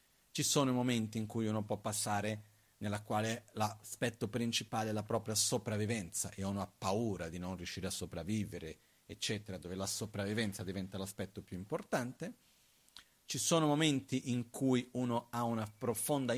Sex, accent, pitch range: male, native, 100-130 Hz